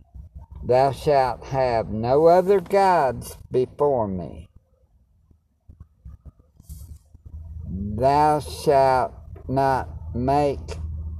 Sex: male